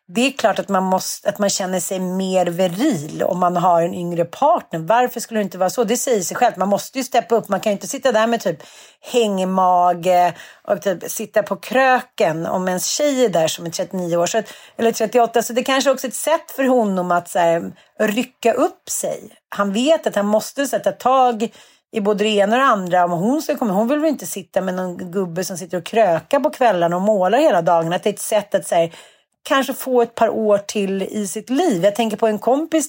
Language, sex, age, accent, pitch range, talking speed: Swedish, female, 40-59, native, 190-245 Hz, 235 wpm